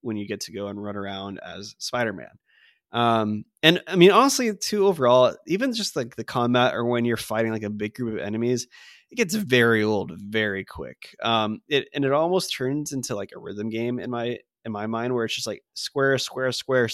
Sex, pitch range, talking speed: male, 110-140 Hz, 215 wpm